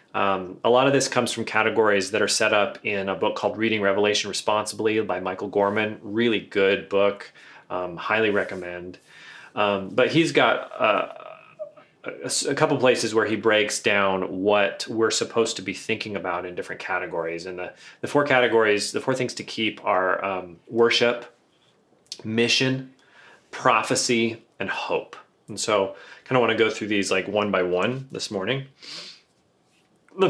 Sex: male